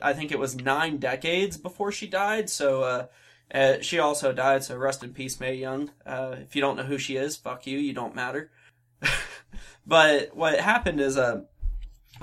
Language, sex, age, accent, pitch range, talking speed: English, male, 20-39, American, 135-155 Hz, 190 wpm